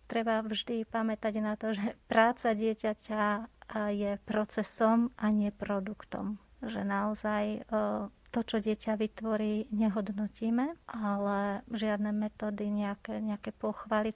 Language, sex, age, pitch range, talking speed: Slovak, female, 40-59, 210-225 Hz, 110 wpm